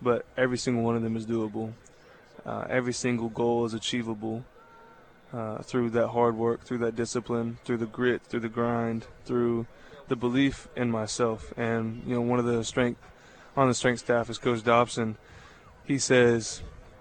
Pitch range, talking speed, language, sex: 110-125 Hz, 175 wpm, English, male